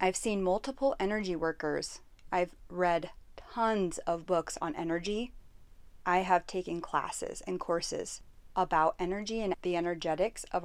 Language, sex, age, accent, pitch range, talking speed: English, female, 30-49, American, 165-210 Hz, 135 wpm